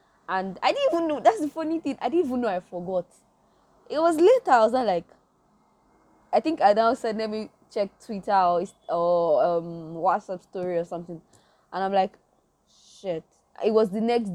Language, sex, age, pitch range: English, female, 20-39, 175-230 Hz